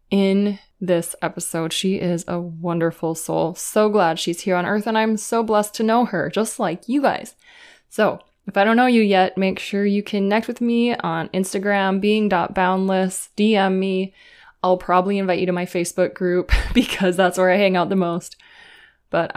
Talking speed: 185 wpm